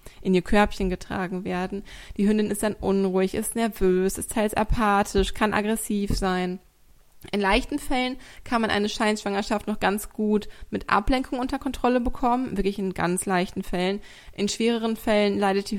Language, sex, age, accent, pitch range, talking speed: German, female, 20-39, German, 185-215 Hz, 165 wpm